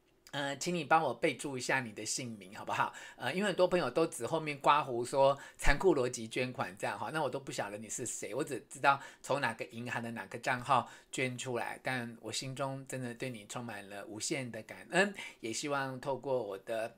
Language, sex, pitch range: Chinese, male, 120-170 Hz